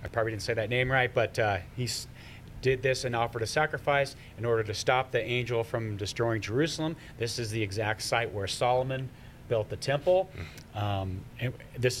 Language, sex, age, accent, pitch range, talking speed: English, male, 30-49, American, 115-140 Hz, 195 wpm